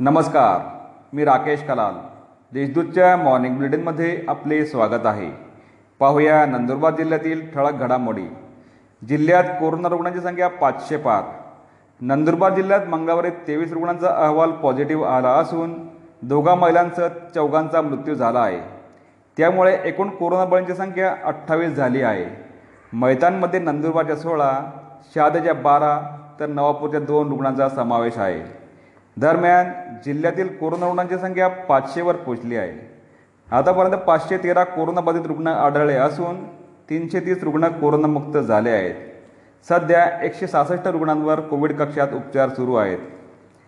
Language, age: Marathi, 40-59